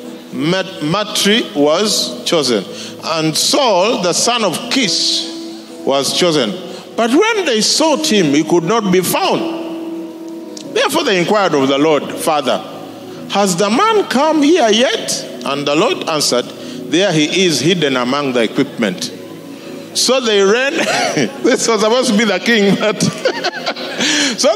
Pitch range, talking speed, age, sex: 160-265 Hz, 140 wpm, 50-69, male